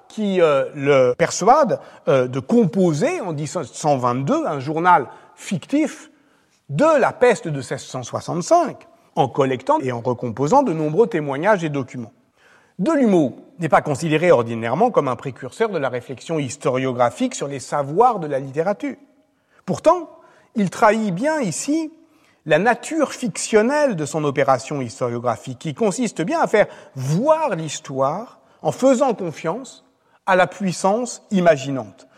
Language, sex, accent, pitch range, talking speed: French, male, French, 140-230 Hz, 135 wpm